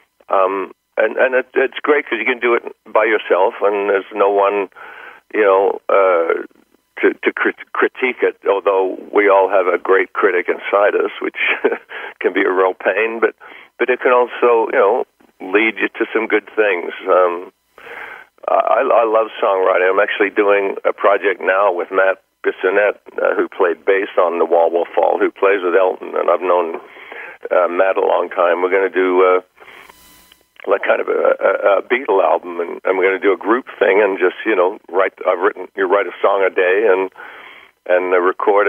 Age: 60-79